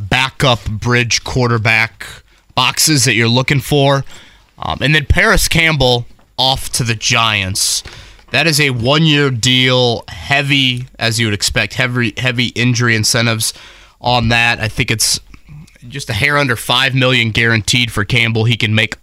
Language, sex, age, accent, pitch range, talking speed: English, male, 20-39, American, 110-140 Hz, 150 wpm